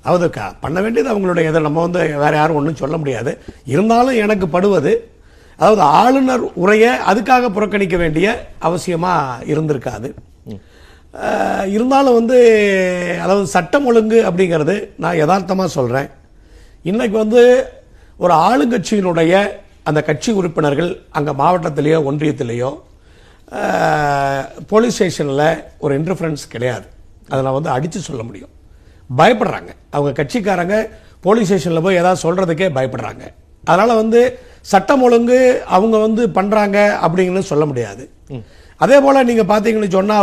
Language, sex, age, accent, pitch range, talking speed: Tamil, male, 50-69, native, 140-210 Hz, 90 wpm